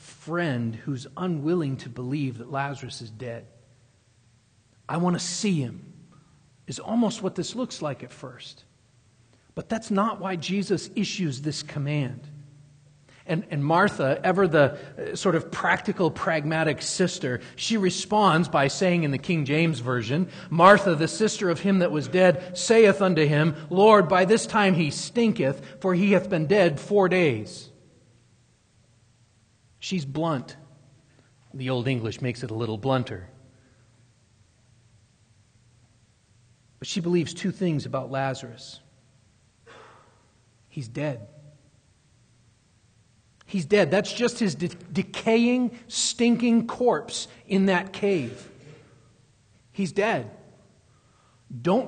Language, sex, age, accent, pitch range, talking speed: English, male, 40-59, American, 120-185 Hz, 125 wpm